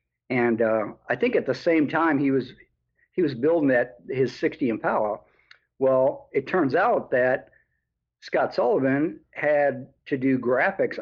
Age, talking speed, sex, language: 50-69, 150 wpm, male, English